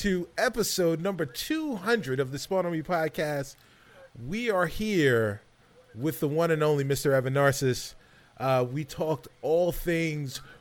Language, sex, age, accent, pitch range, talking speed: English, male, 30-49, American, 120-165 Hz, 135 wpm